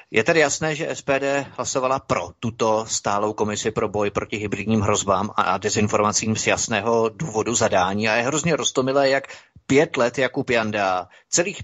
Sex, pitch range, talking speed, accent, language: male, 105-135 Hz, 160 wpm, native, Czech